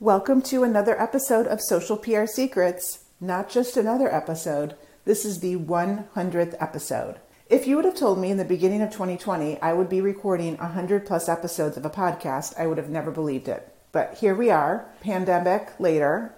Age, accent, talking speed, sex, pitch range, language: 40-59, American, 185 wpm, female, 160-190 Hz, English